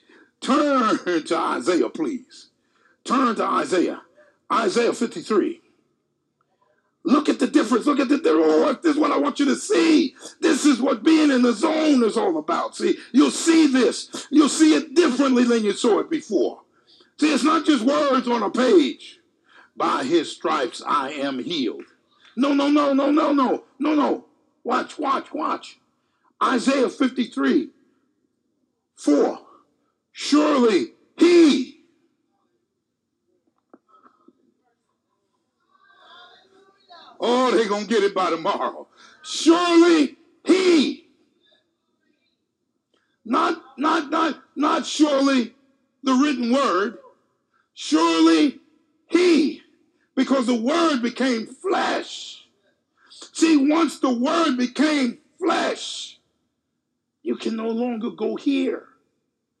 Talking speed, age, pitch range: 115 wpm, 50-69, 270-330 Hz